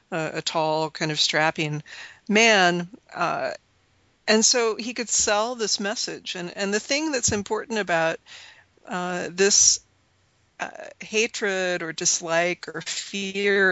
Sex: female